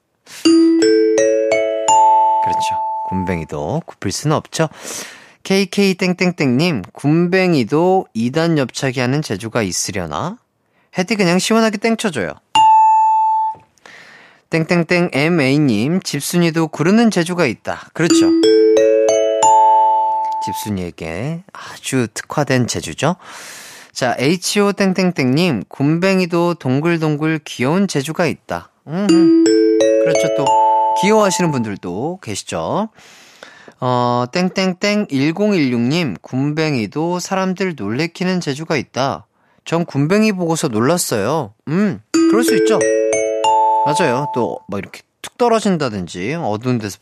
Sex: male